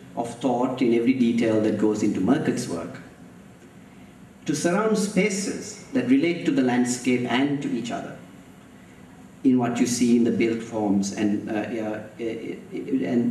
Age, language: 50-69, English